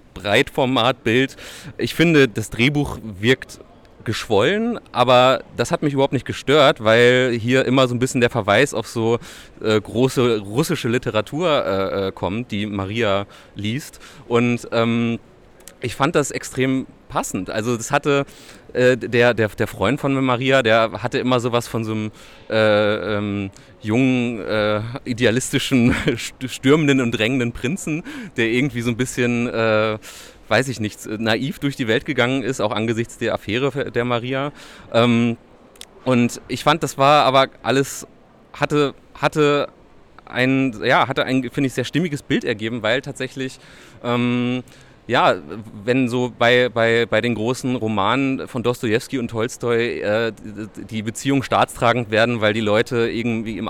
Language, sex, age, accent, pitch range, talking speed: German, male, 30-49, German, 110-130 Hz, 145 wpm